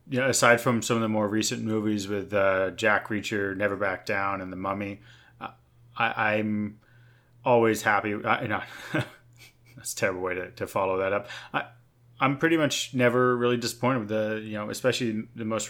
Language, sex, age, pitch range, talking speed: English, male, 30-49, 100-120 Hz, 190 wpm